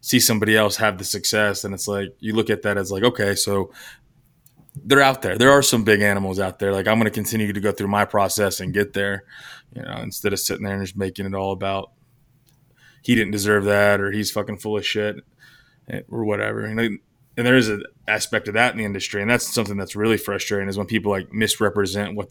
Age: 20-39